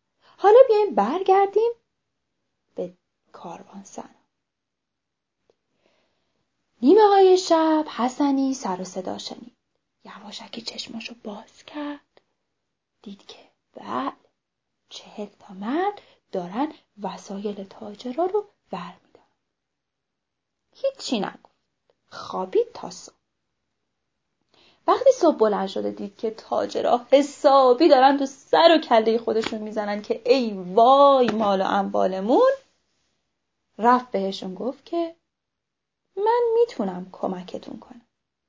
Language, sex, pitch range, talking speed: Persian, female, 210-355 Hz, 95 wpm